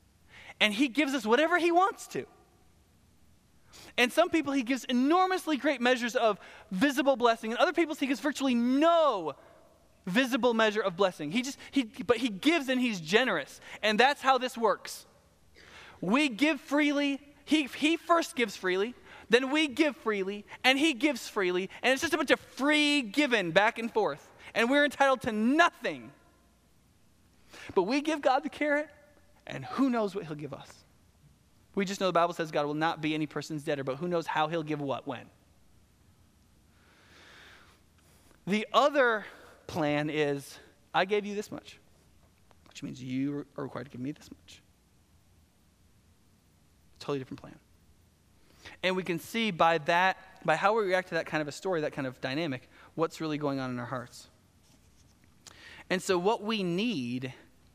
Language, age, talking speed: English, 20-39, 170 wpm